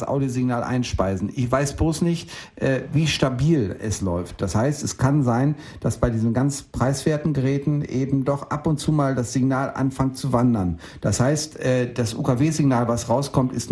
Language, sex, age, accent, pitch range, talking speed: German, male, 60-79, German, 115-140 Hz, 185 wpm